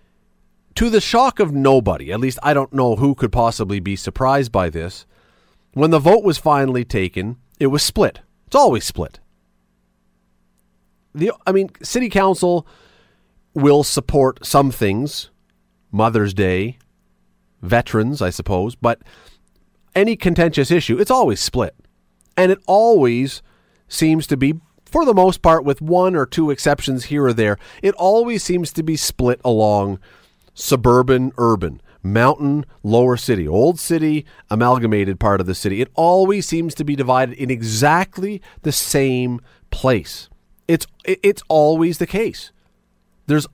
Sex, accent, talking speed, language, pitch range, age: male, American, 145 wpm, English, 100-155 Hz, 40-59